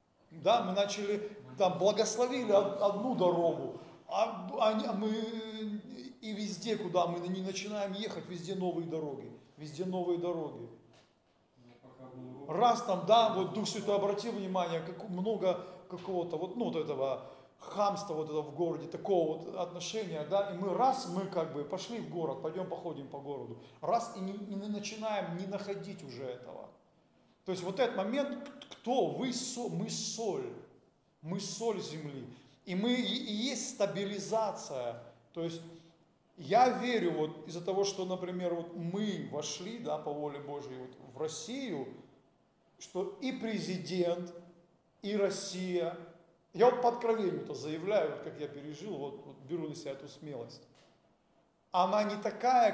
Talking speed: 145 wpm